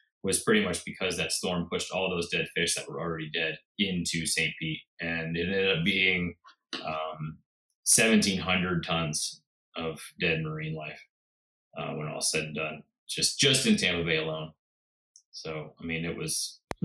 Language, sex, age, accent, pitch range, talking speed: English, male, 20-39, American, 80-125 Hz, 175 wpm